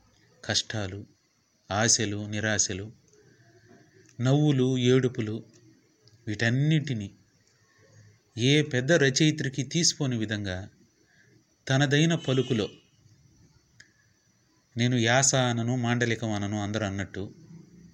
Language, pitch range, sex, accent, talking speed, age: Telugu, 105-135 Hz, male, native, 60 wpm, 30-49